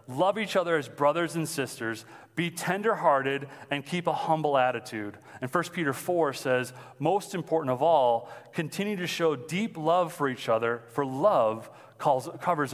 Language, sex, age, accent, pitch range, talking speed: English, male, 30-49, American, 135-175 Hz, 170 wpm